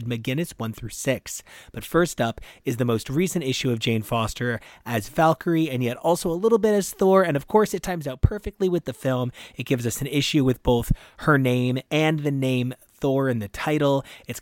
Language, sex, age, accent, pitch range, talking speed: English, male, 30-49, American, 120-145 Hz, 215 wpm